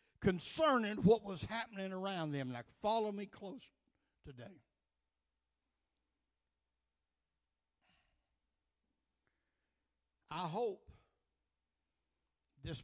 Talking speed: 65 wpm